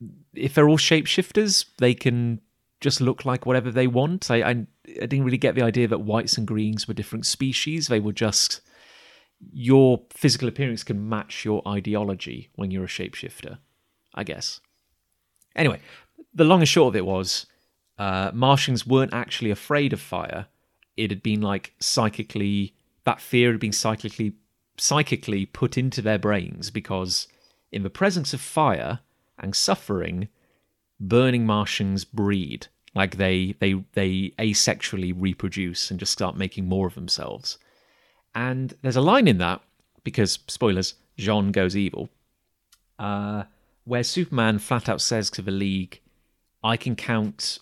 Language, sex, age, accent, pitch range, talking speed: English, male, 30-49, British, 95-125 Hz, 150 wpm